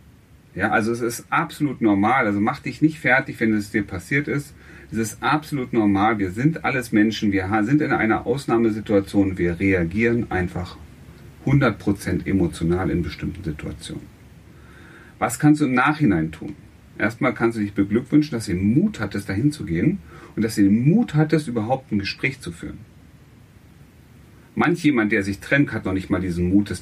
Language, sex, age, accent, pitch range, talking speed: German, male, 40-59, German, 100-145 Hz, 175 wpm